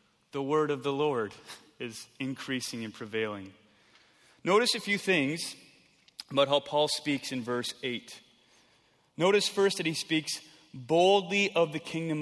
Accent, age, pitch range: American, 30-49, 150-215 Hz